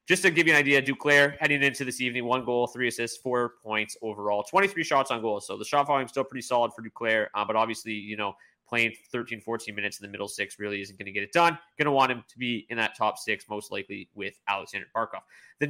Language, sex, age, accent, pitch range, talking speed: English, male, 30-49, American, 115-155 Hz, 260 wpm